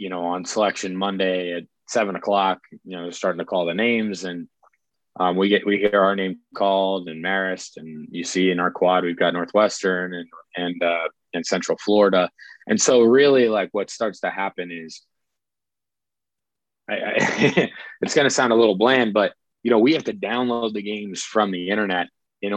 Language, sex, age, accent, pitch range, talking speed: English, male, 20-39, American, 90-105 Hz, 190 wpm